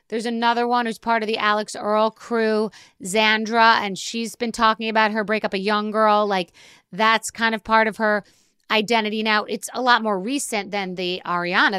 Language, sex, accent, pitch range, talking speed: English, female, American, 195-235 Hz, 195 wpm